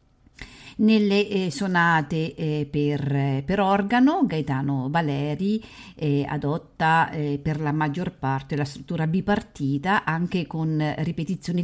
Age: 50-69